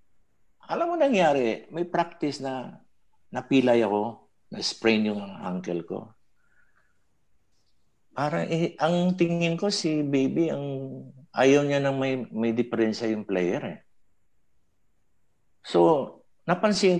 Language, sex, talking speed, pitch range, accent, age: English, male, 125 wpm, 110-170 Hz, Filipino, 50-69